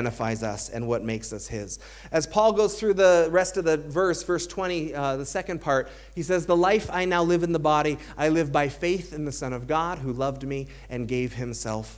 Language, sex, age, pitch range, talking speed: English, male, 30-49, 150-200 Hz, 230 wpm